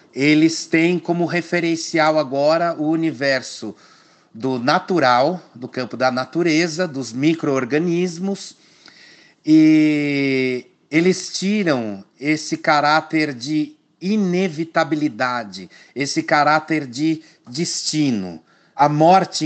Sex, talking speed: male, 85 wpm